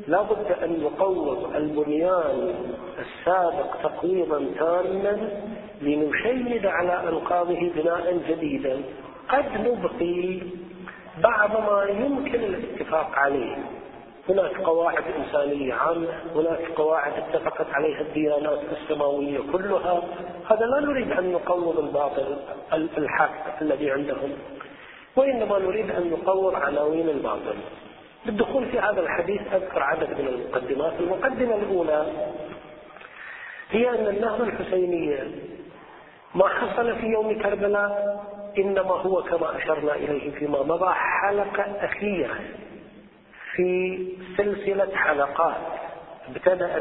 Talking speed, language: 100 wpm, Arabic